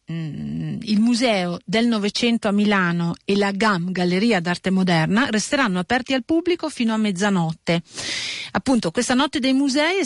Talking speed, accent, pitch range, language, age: 150 wpm, native, 180-250 Hz, Italian, 40-59